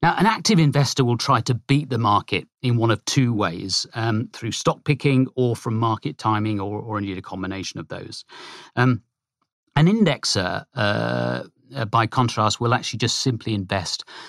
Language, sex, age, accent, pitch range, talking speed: English, male, 40-59, British, 110-150 Hz, 170 wpm